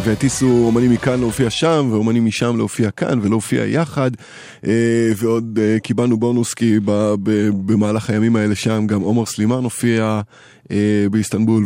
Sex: male